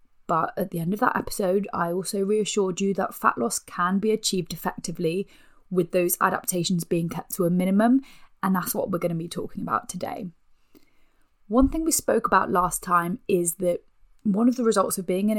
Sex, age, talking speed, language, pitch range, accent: female, 20-39, 205 wpm, English, 175-210 Hz, British